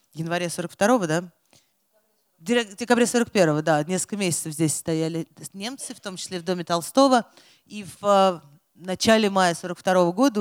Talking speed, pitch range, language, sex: 135 wpm, 170-225 Hz, Russian, female